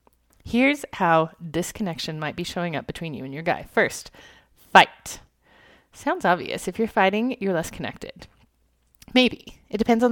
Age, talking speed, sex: 30-49, 155 wpm, female